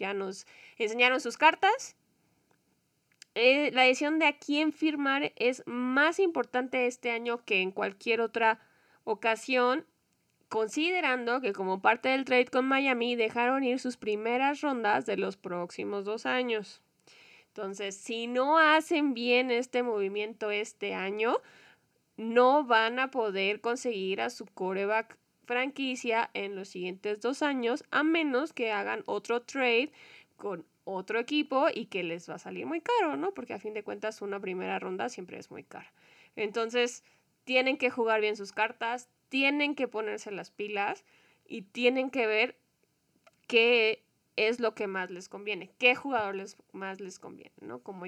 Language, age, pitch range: Spanish, 20-39, 205-260 Hz